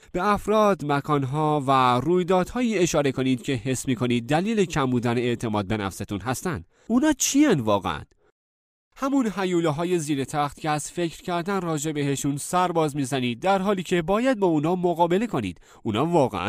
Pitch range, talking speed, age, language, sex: 120-185 Hz, 155 wpm, 30-49, Persian, male